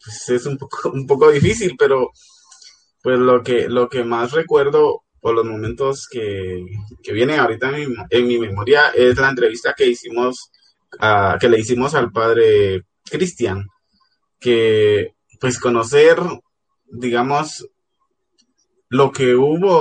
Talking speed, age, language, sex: 140 wpm, 20-39, Spanish, male